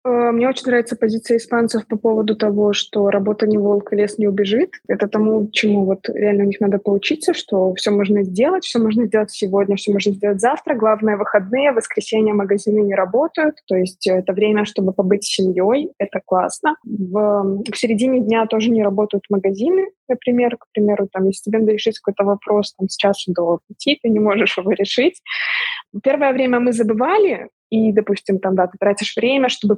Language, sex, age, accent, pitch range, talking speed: Russian, female, 20-39, native, 205-240 Hz, 185 wpm